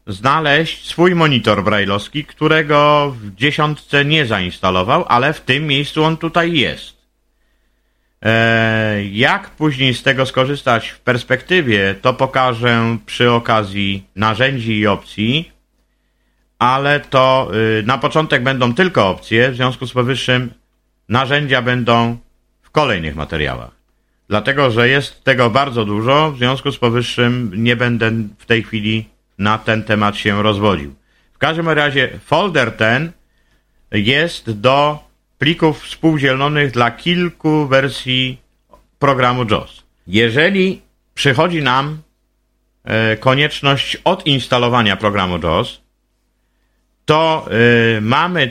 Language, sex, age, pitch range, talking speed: Polish, male, 50-69, 110-145 Hz, 110 wpm